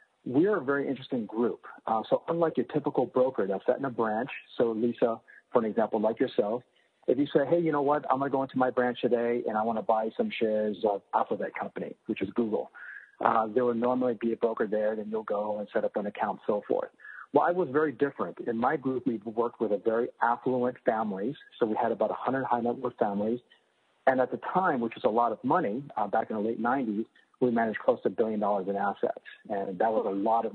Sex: male